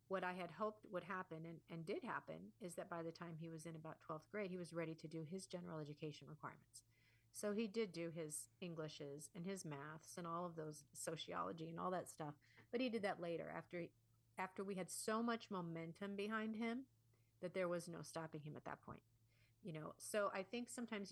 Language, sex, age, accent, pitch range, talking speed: English, female, 40-59, American, 155-185 Hz, 220 wpm